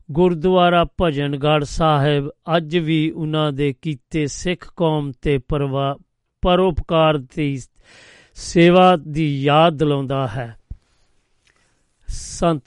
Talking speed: 95 wpm